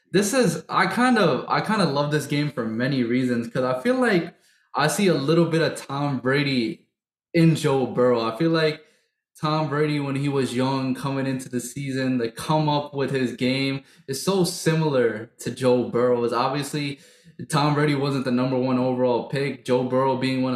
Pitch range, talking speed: 130-165 Hz, 200 wpm